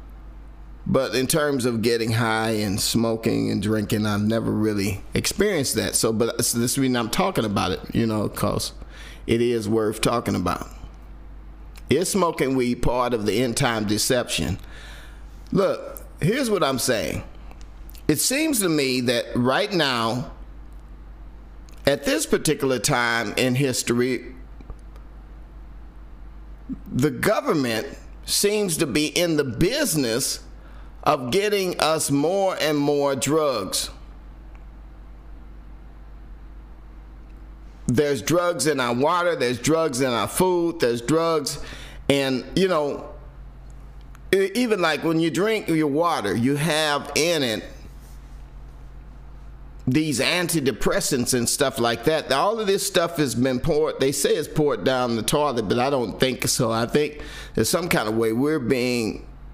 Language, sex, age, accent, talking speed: English, male, 50-69, American, 135 wpm